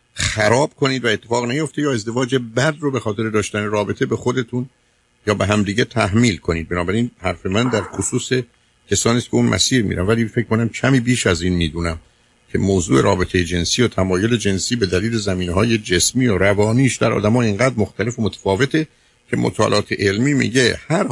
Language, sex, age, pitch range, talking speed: Persian, male, 50-69, 90-120 Hz, 180 wpm